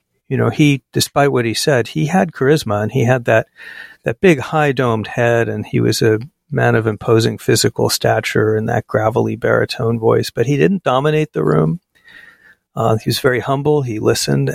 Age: 50-69